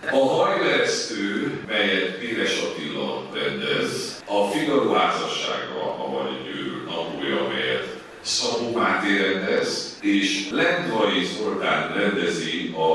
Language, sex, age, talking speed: Hungarian, male, 50-69, 105 wpm